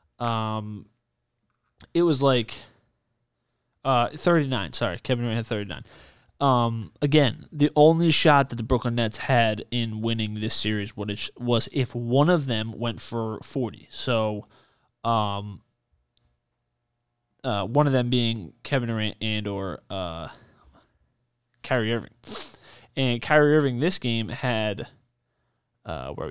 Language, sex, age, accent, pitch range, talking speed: English, male, 20-39, American, 110-135 Hz, 130 wpm